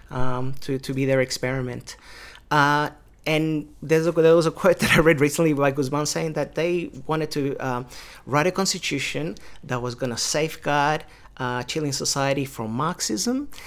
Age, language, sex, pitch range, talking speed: 30-49, English, male, 135-160 Hz, 170 wpm